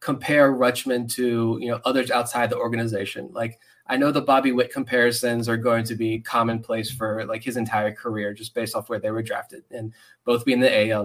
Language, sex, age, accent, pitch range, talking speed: English, male, 20-39, American, 115-155 Hz, 205 wpm